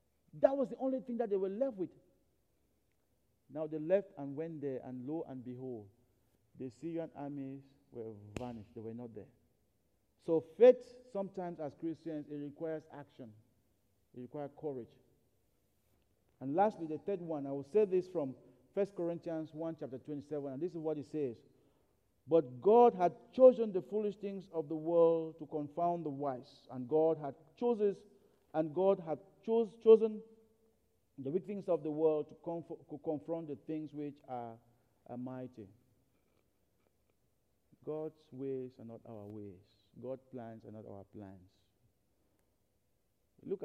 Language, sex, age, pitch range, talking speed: English, male, 50-69, 125-185 Hz, 155 wpm